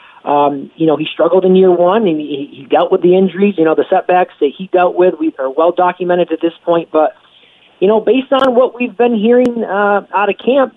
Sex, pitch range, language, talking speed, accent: male, 165-210 Hz, English, 235 wpm, American